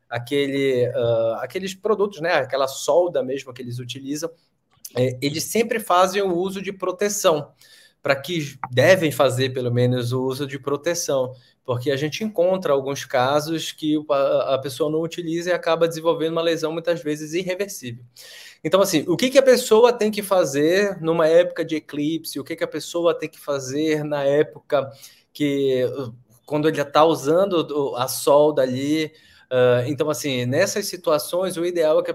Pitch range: 140-185 Hz